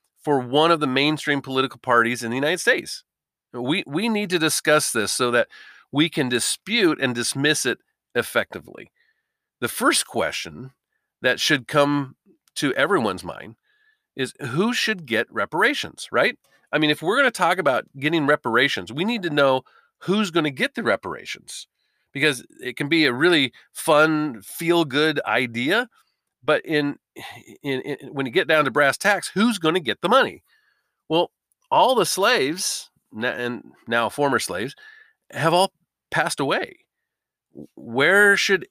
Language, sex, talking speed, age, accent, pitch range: English, male, 160 wpm, 40-59, American, 140-190 Hz